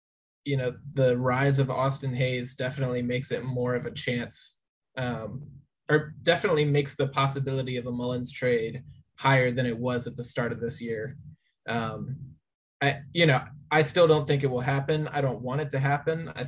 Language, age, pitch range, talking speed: English, 20-39, 125-140 Hz, 190 wpm